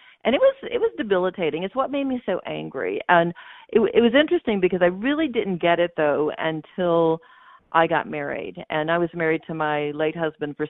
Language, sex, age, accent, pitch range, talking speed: English, female, 50-69, American, 150-205 Hz, 205 wpm